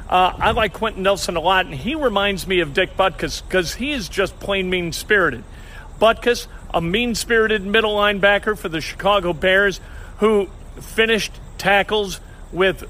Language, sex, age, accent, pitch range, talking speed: English, male, 50-69, American, 175-220 Hz, 155 wpm